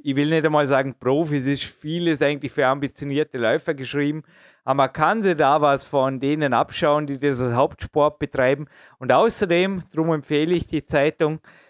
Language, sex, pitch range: German, male, 140-170 Hz